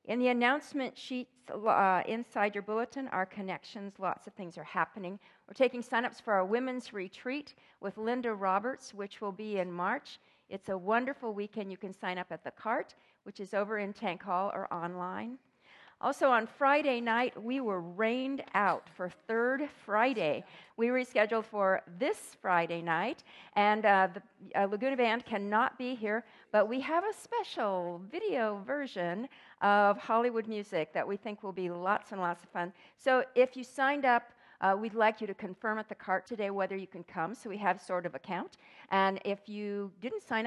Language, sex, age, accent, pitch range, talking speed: English, female, 50-69, American, 190-240 Hz, 185 wpm